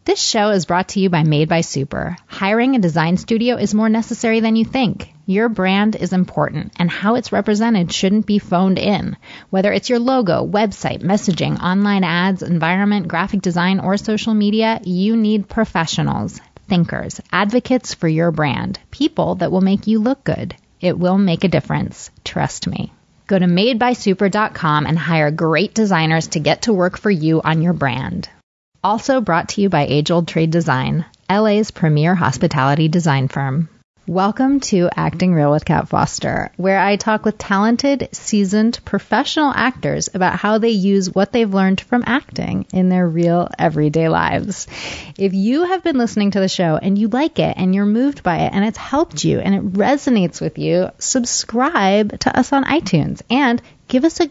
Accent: American